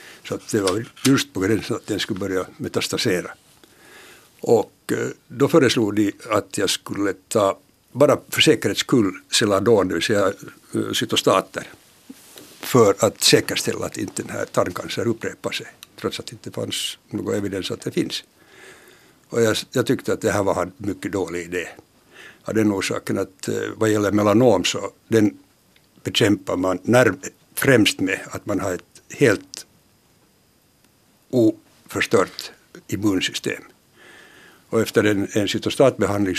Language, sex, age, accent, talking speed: Finnish, male, 60-79, native, 140 wpm